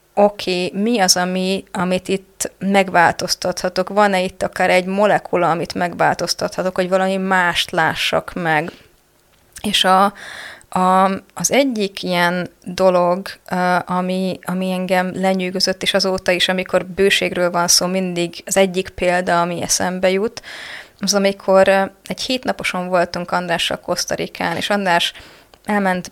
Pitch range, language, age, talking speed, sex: 180-210 Hz, Hungarian, 20-39, 115 wpm, female